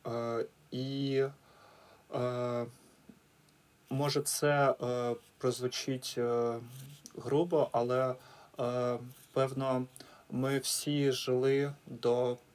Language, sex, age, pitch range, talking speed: Ukrainian, male, 30-49, 125-140 Hz, 75 wpm